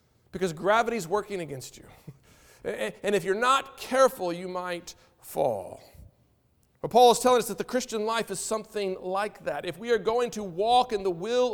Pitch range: 155-205 Hz